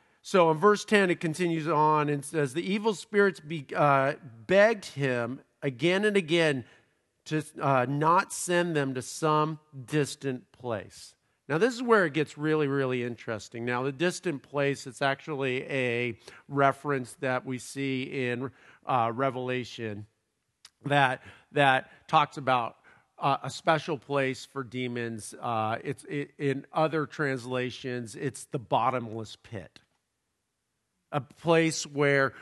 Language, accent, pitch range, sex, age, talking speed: English, American, 125-160 Hz, male, 50-69, 135 wpm